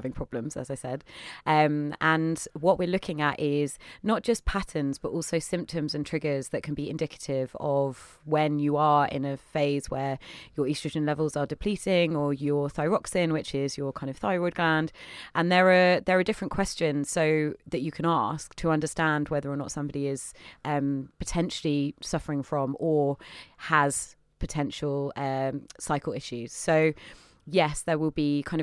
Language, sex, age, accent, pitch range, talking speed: English, female, 30-49, British, 145-170 Hz, 170 wpm